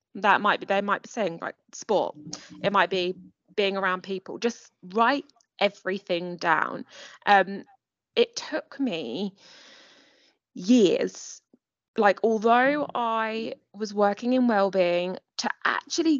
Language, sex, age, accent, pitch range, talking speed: English, female, 20-39, British, 185-240 Hz, 120 wpm